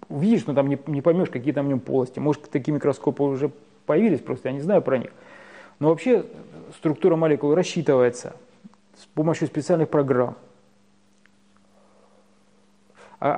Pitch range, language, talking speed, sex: 140-170 Hz, Russian, 140 wpm, male